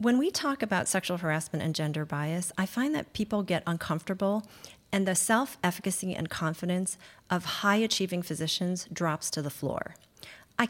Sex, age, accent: female, 40-59, American